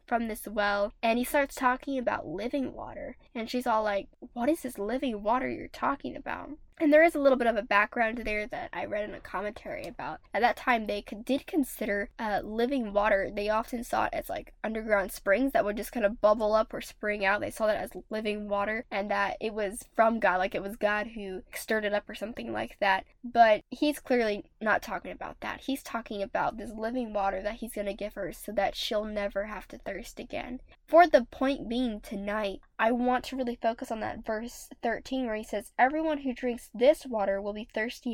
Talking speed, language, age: 225 wpm, English, 10-29